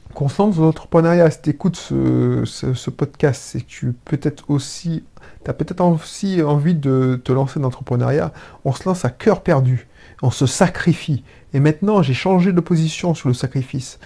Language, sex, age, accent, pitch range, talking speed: French, male, 30-49, French, 125-160 Hz, 190 wpm